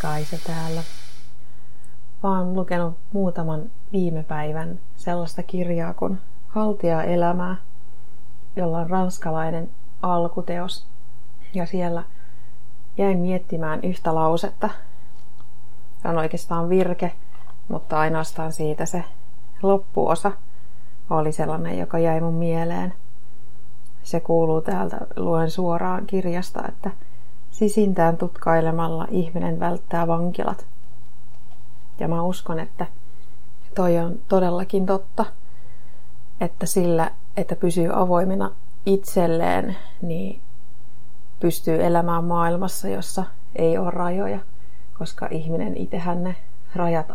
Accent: native